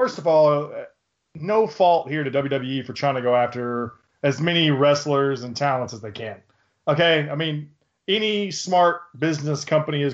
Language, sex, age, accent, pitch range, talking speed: English, male, 20-39, American, 135-180 Hz, 170 wpm